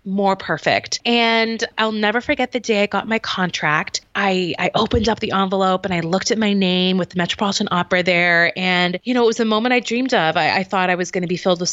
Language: English